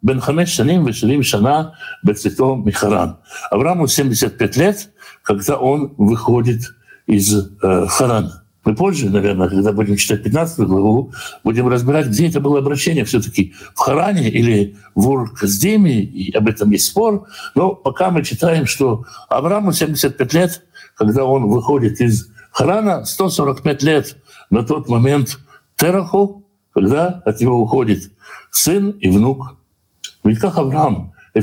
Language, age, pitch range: Russian, 60-79, 110-165 Hz